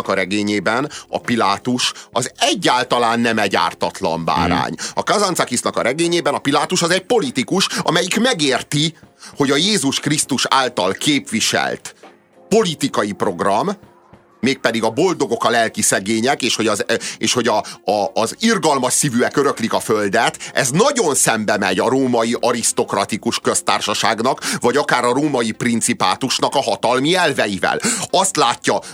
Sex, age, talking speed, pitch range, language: male, 30-49, 130 wpm, 105-150 Hz, Hungarian